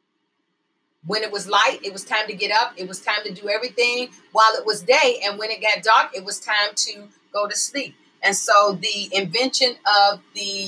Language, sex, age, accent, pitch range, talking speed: English, female, 40-59, American, 195-235 Hz, 215 wpm